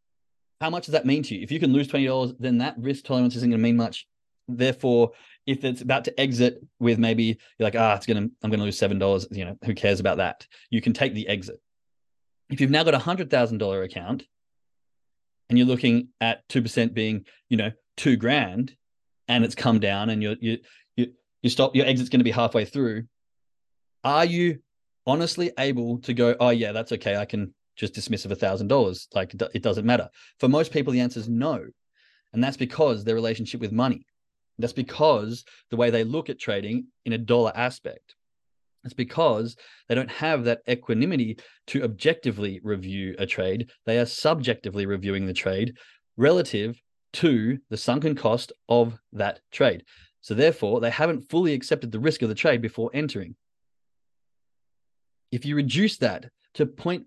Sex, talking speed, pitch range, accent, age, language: male, 190 wpm, 110-135 Hz, Australian, 20-39, English